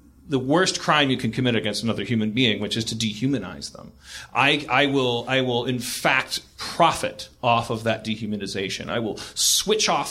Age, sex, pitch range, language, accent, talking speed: 30-49, male, 115-165 Hz, English, American, 185 wpm